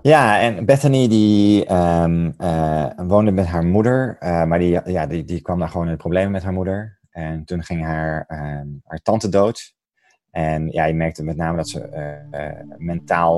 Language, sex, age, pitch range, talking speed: Dutch, male, 20-39, 75-95 Hz, 195 wpm